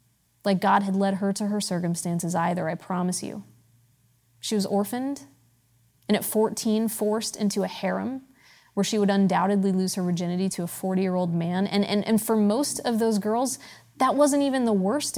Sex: female